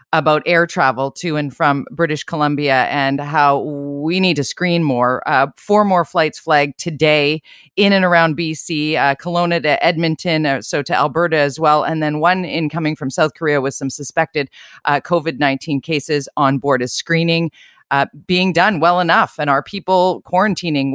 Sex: female